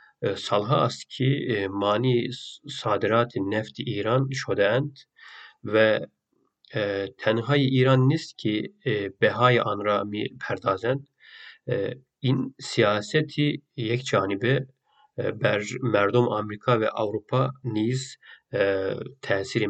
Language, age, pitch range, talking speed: Turkish, 40-59, 105-130 Hz, 100 wpm